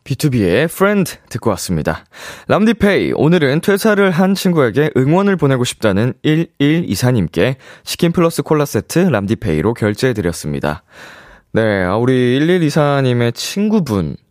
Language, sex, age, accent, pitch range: Korean, male, 20-39, native, 95-145 Hz